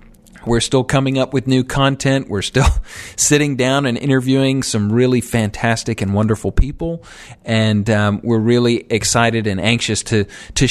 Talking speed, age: 155 wpm, 40-59